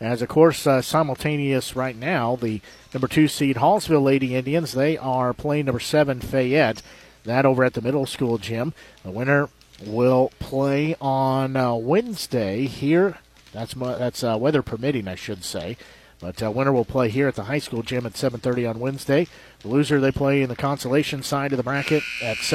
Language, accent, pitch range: English, American, 115-140 Hz